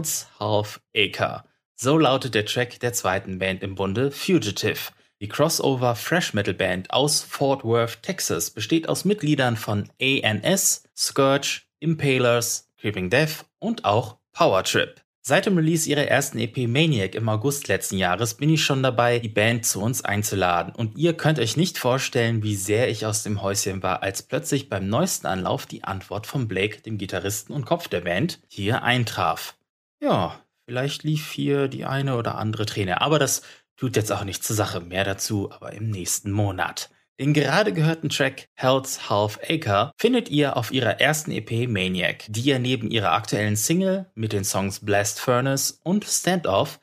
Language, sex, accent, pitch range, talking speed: German, male, German, 105-145 Hz, 170 wpm